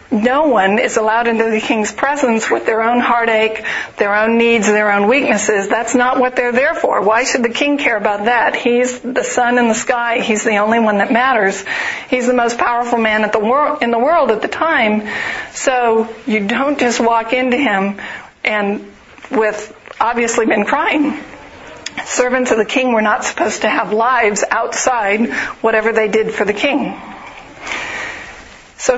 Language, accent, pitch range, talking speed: English, American, 220-255 Hz, 175 wpm